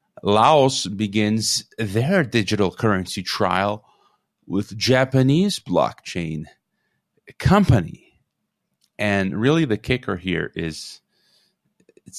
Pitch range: 95-120 Hz